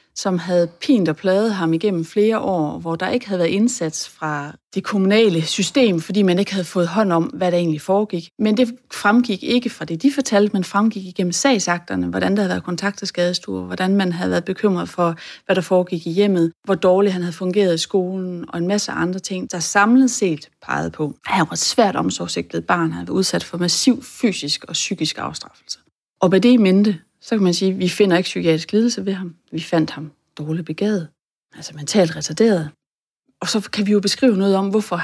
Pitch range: 170-205 Hz